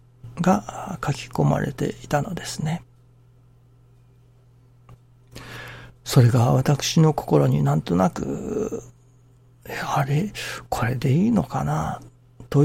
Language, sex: Japanese, male